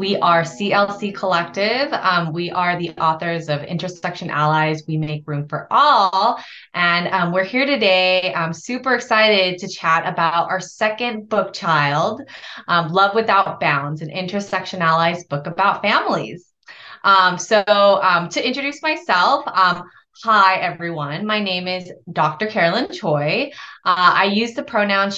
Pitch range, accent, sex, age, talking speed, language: 170-215 Hz, American, female, 20-39, 150 wpm, English